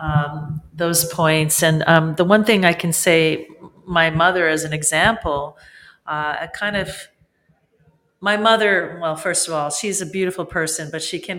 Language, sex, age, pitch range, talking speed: English, female, 40-59, 150-180 Hz, 175 wpm